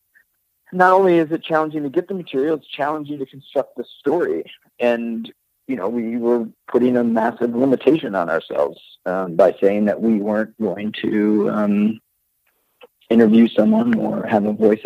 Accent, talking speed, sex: American, 165 wpm, male